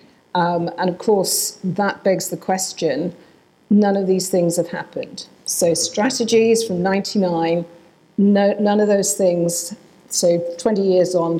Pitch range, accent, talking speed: 175-200 Hz, British, 140 wpm